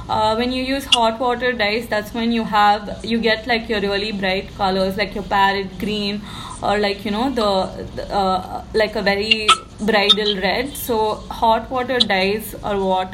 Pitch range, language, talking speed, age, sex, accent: 200-230 Hz, English, 185 wpm, 20-39, female, Indian